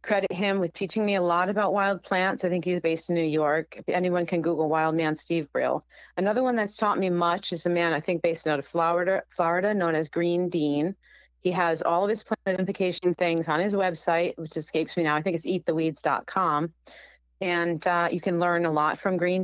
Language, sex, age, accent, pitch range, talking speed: English, female, 30-49, American, 150-180 Hz, 220 wpm